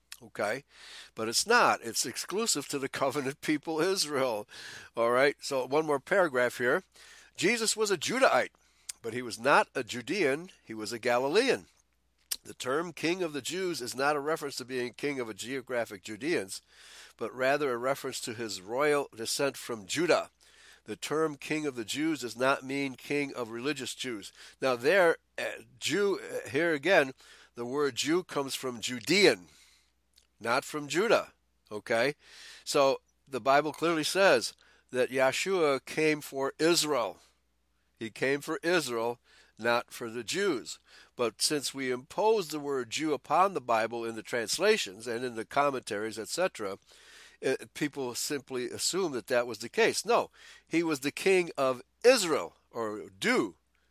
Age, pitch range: 60-79, 120-160 Hz